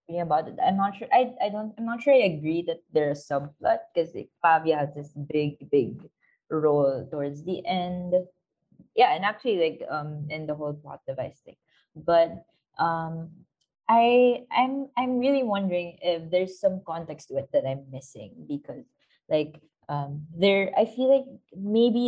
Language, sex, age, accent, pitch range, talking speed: English, female, 20-39, Filipino, 150-200 Hz, 170 wpm